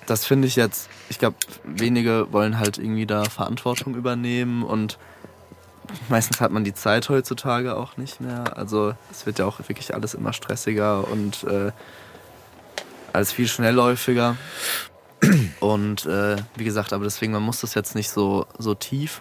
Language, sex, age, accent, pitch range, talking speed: German, male, 20-39, German, 105-120 Hz, 160 wpm